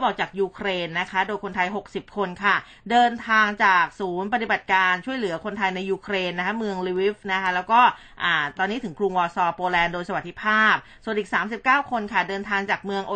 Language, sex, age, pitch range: Thai, female, 20-39, 190-235 Hz